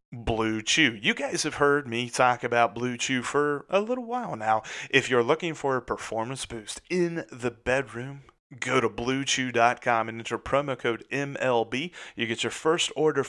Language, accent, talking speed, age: English, American, 175 wpm, 30-49